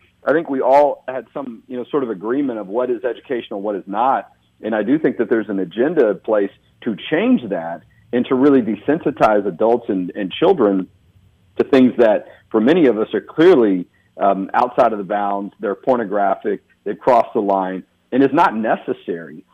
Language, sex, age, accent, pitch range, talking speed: English, male, 50-69, American, 105-145 Hz, 195 wpm